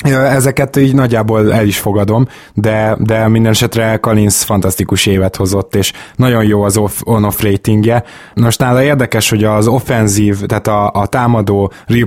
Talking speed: 160 wpm